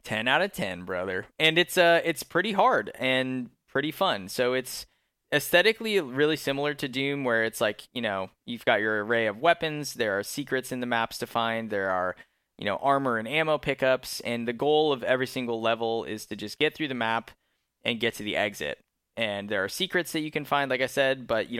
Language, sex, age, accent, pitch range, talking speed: English, male, 10-29, American, 110-140 Hz, 220 wpm